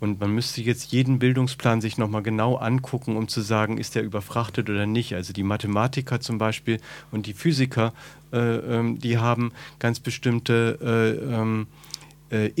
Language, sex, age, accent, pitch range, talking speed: German, male, 40-59, German, 110-135 Hz, 160 wpm